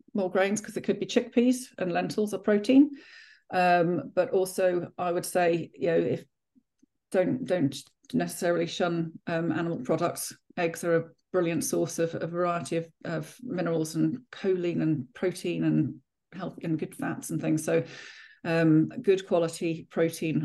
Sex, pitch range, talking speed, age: female, 165-190 Hz, 160 wpm, 40-59